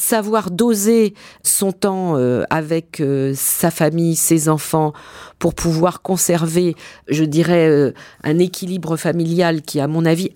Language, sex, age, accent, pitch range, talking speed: French, female, 50-69, French, 140-185 Hz, 120 wpm